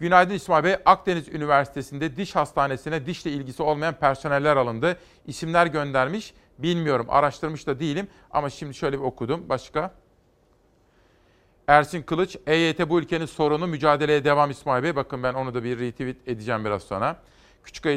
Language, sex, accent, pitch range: Turkish, male, native, 135-160 Hz